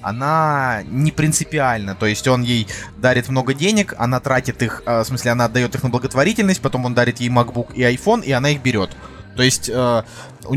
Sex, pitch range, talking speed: male, 120-160 Hz, 195 wpm